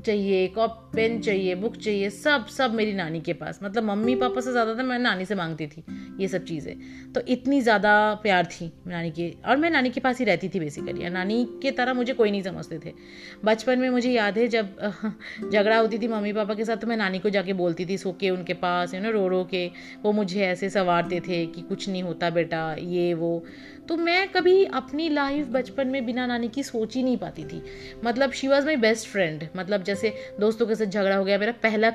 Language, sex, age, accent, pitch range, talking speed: Hindi, female, 30-49, native, 185-235 Hz, 225 wpm